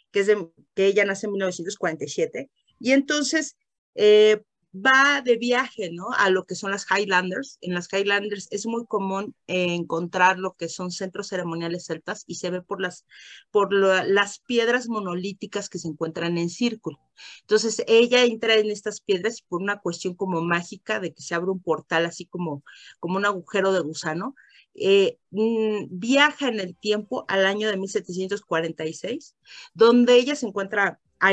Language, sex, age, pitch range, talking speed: Spanish, female, 40-59, 175-235 Hz, 170 wpm